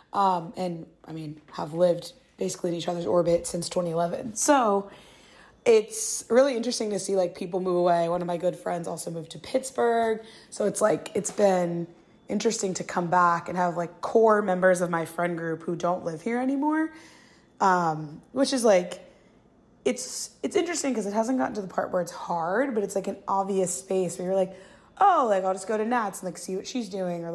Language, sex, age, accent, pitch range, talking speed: English, female, 20-39, American, 175-220 Hz, 210 wpm